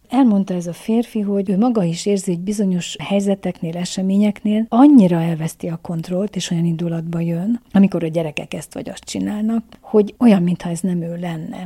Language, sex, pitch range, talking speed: Hungarian, female, 175-200 Hz, 180 wpm